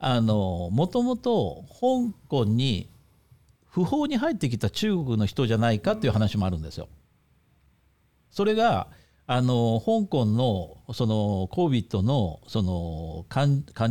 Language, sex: Japanese, male